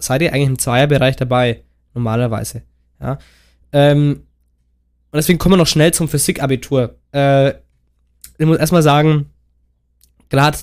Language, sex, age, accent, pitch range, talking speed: German, male, 20-39, German, 125-155 Hz, 130 wpm